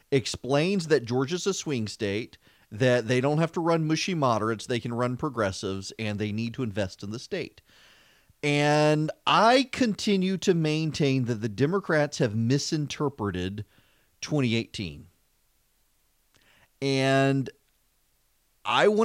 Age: 40-59